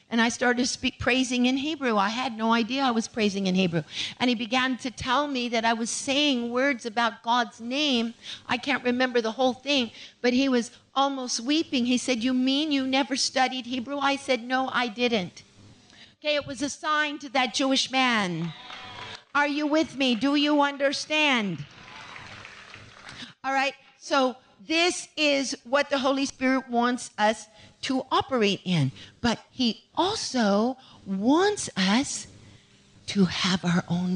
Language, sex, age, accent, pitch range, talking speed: English, female, 50-69, American, 215-275 Hz, 165 wpm